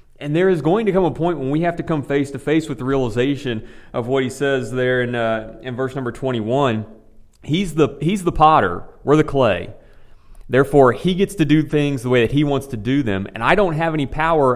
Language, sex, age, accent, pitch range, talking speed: English, male, 30-49, American, 120-145 Hz, 230 wpm